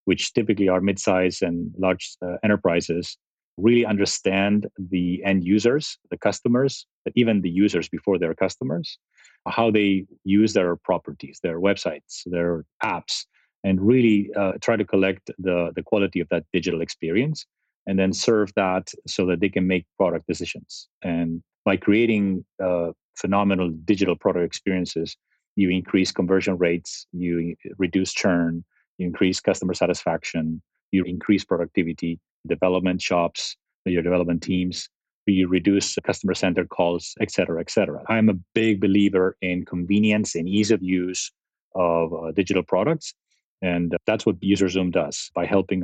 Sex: male